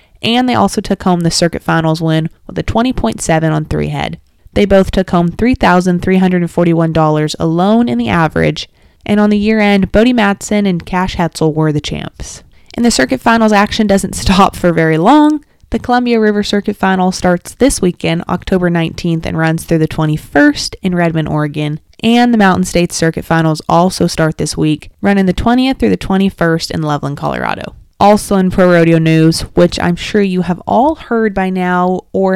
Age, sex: 20-39, female